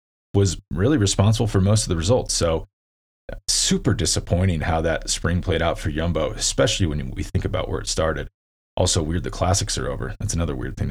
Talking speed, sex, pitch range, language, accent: 200 wpm, male, 85-110 Hz, English, American